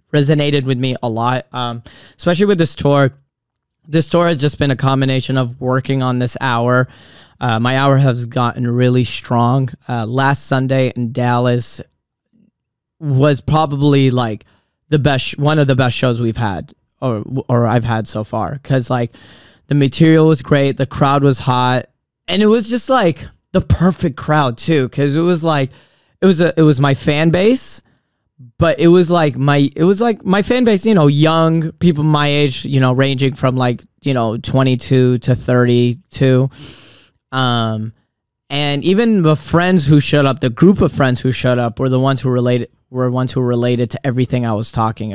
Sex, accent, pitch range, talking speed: male, American, 120-150 Hz, 185 wpm